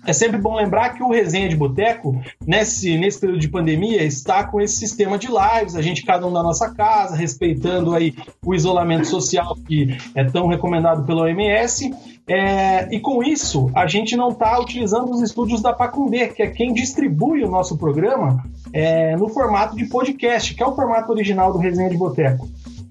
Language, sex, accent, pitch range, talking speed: Portuguese, male, Brazilian, 170-230 Hz, 190 wpm